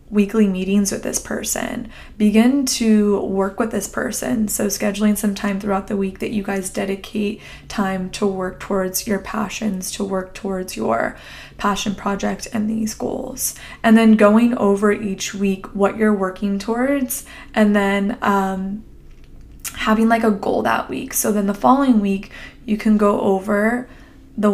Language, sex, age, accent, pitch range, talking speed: English, female, 20-39, American, 195-220 Hz, 160 wpm